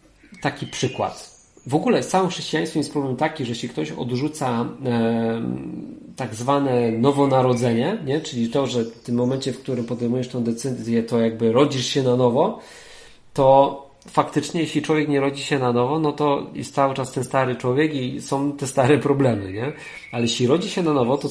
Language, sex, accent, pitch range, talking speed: Polish, male, native, 125-150 Hz, 185 wpm